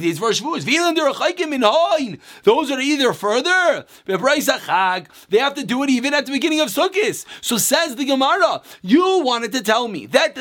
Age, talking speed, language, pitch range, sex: 30-49, 145 wpm, English, 230-305 Hz, male